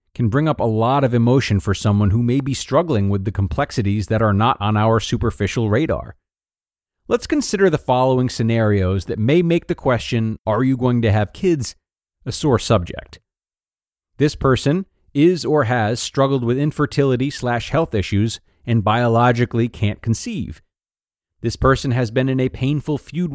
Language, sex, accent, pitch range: English, male, American, 110-150 Hz